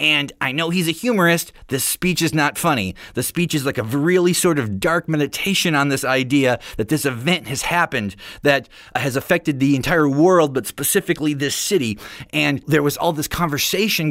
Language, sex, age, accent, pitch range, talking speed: English, male, 30-49, American, 115-165 Hz, 190 wpm